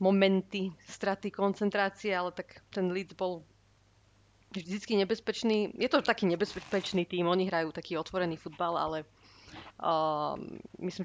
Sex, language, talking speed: female, Slovak, 125 wpm